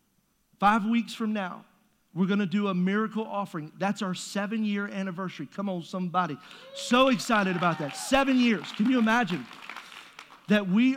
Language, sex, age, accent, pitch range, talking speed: English, male, 40-59, American, 175-215 Hz, 160 wpm